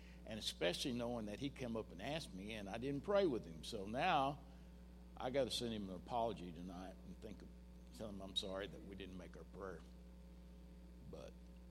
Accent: American